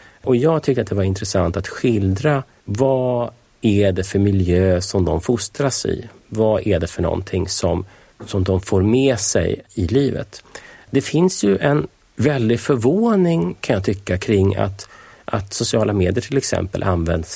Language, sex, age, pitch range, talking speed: Swedish, male, 30-49, 95-125 Hz, 165 wpm